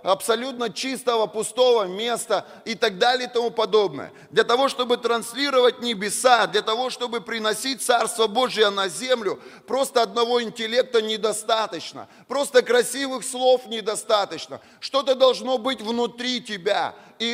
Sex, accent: male, native